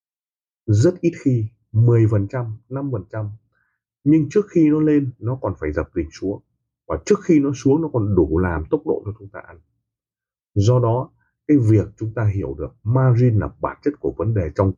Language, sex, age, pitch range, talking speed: Vietnamese, male, 30-49, 100-125 Hz, 190 wpm